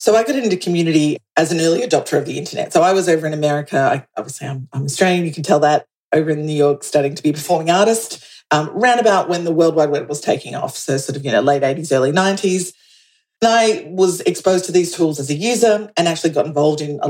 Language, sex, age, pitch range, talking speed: English, female, 40-59, 150-190 Hz, 255 wpm